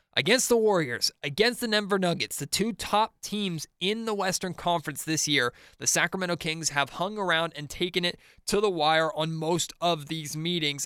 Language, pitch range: English, 150-180 Hz